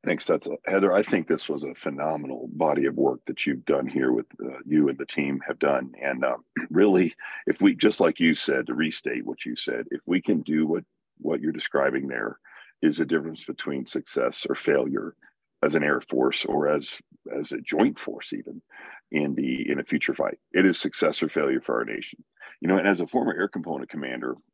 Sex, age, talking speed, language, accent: male, 50-69, 220 wpm, English, American